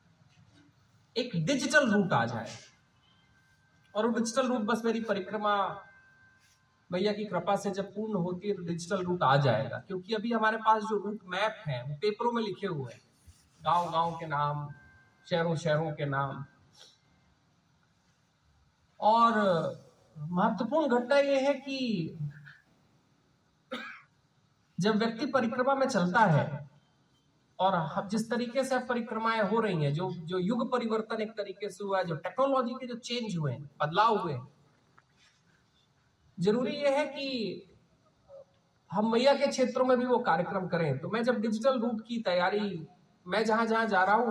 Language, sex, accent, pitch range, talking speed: Hindi, male, native, 160-230 Hz, 150 wpm